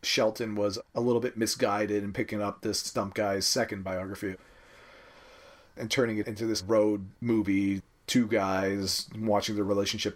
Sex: male